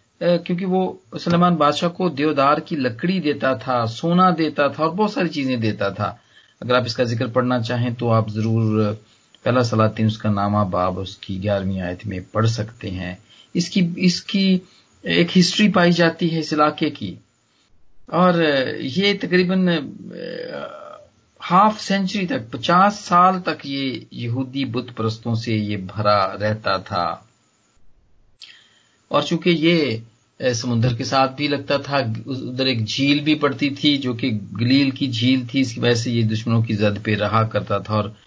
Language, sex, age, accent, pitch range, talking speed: Hindi, male, 40-59, native, 110-160 Hz, 160 wpm